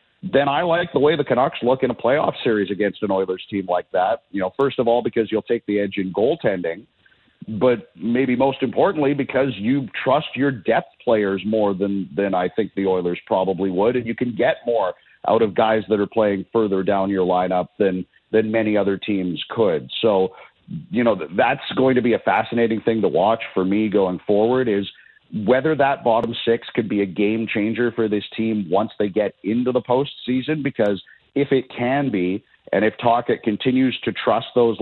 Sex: male